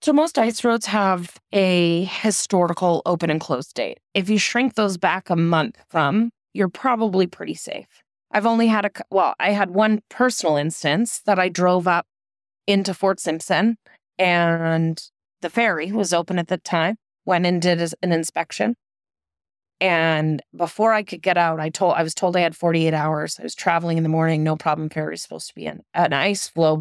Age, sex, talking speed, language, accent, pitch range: 20-39, female, 190 wpm, English, American, 160-195 Hz